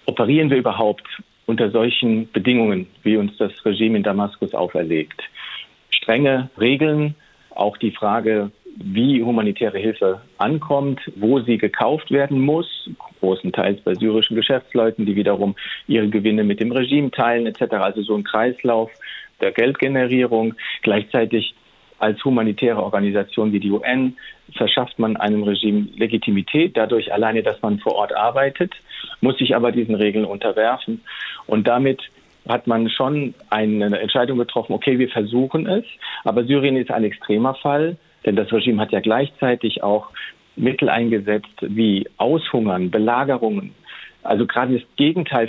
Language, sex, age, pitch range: German, male, 40-59, 105-135 Hz